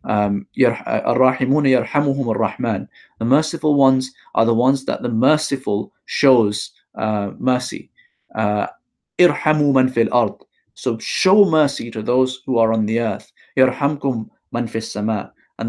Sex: male